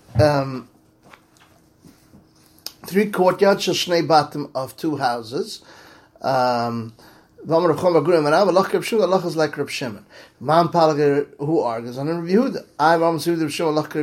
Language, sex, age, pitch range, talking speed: English, male, 30-49, 150-190 Hz, 45 wpm